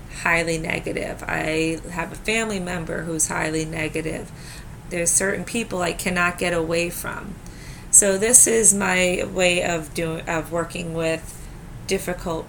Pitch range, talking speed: 160-185 Hz, 140 wpm